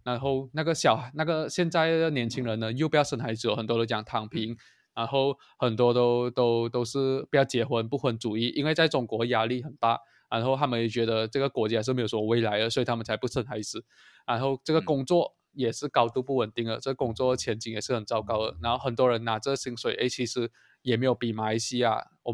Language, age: Chinese, 20-39